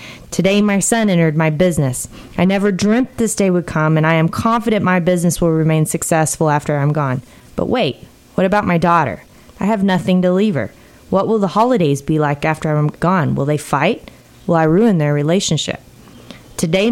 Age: 20-39